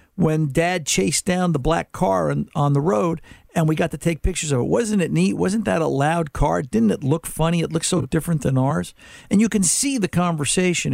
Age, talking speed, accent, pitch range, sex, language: 60-79, 230 wpm, American, 135-180 Hz, male, English